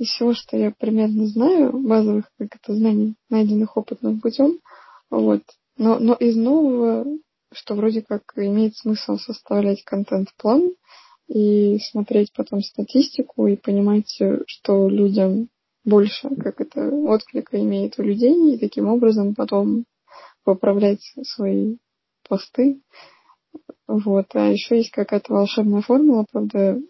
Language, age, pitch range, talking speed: Russian, 20-39, 205-260 Hz, 125 wpm